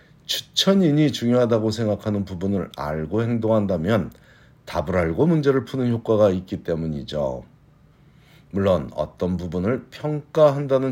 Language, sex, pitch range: Korean, male, 95-140 Hz